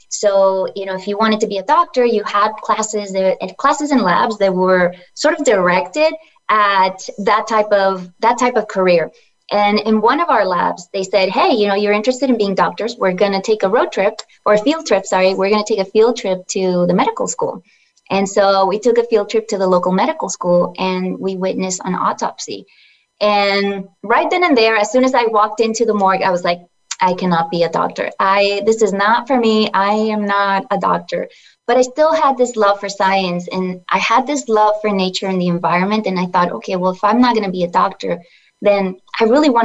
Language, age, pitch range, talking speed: English, 20-39, 185-220 Hz, 230 wpm